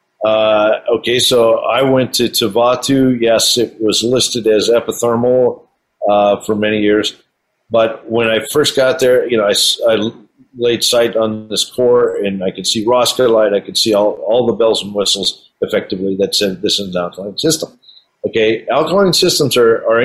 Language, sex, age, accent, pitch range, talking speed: English, male, 50-69, American, 110-135 Hz, 180 wpm